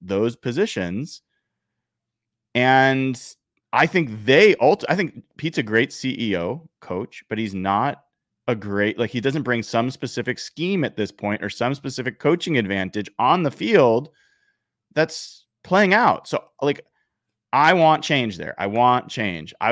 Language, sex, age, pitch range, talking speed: English, male, 30-49, 105-145 Hz, 150 wpm